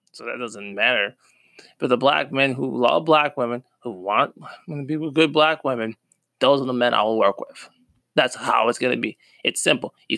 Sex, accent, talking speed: male, American, 220 wpm